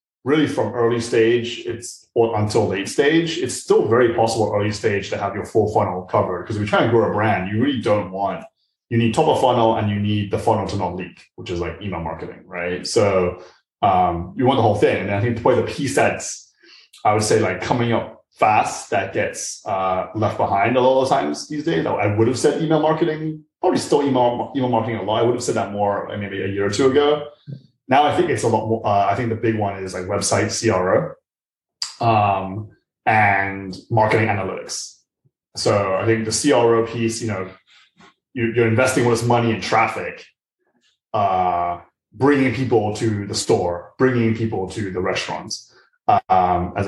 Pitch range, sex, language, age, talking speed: 95-120 Hz, male, English, 20-39, 200 wpm